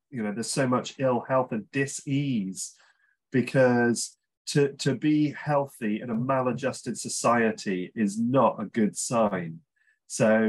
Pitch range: 105-130 Hz